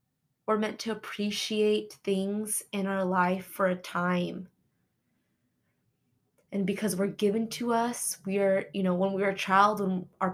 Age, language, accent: 20-39, English, American